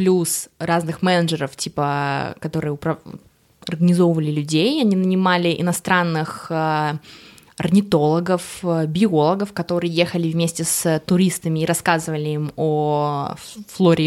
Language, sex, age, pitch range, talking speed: Russian, female, 20-39, 165-205 Hz, 100 wpm